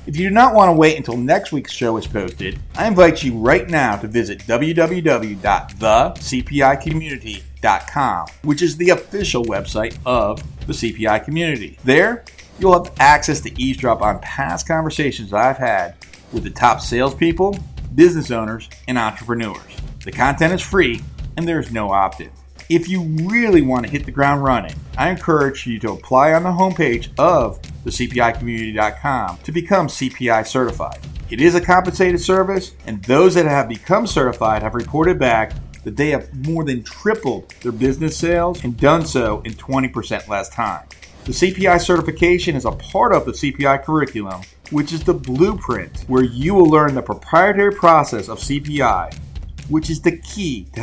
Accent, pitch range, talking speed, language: American, 110-160 Hz, 165 wpm, English